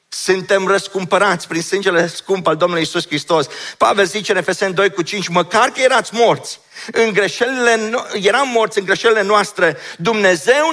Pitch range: 175-240 Hz